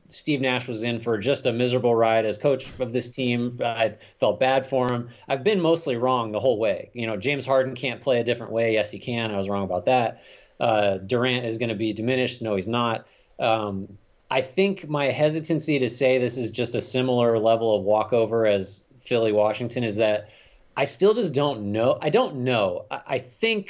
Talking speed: 210 wpm